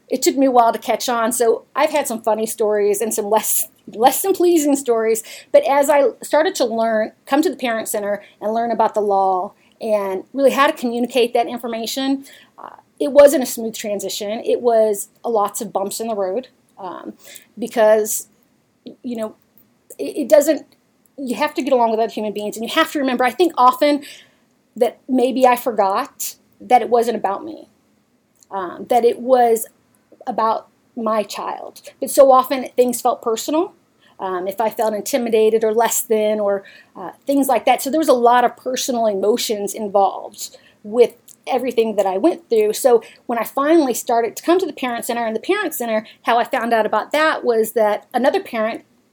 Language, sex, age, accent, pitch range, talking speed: English, female, 30-49, American, 220-270 Hz, 190 wpm